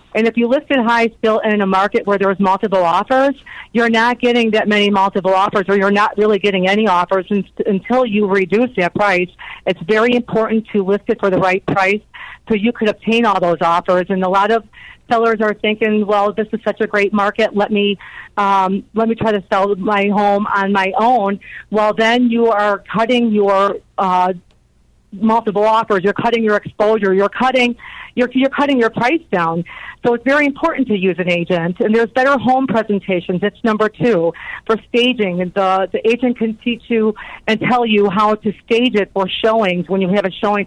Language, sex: English, female